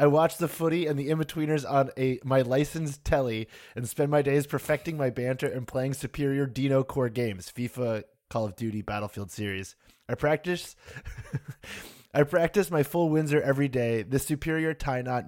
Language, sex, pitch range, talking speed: English, male, 125-155 Hz, 165 wpm